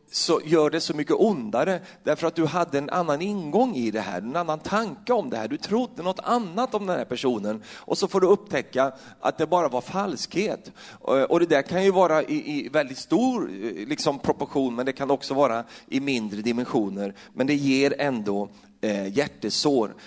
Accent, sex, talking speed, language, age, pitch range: native, male, 195 wpm, Swedish, 40-59, 115-160 Hz